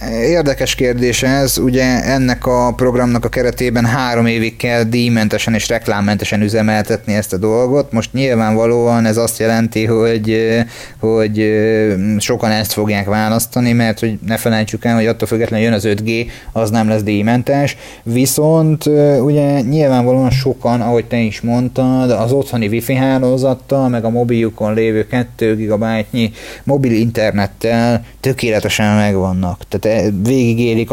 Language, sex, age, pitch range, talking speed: Hungarian, male, 30-49, 110-125 Hz, 135 wpm